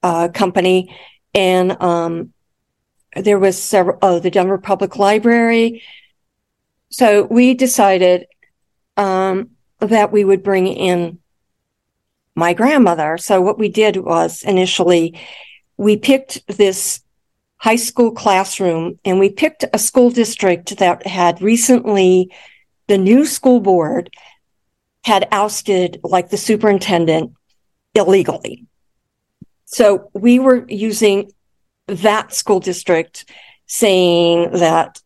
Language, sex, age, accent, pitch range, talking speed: English, female, 50-69, American, 175-215 Hz, 110 wpm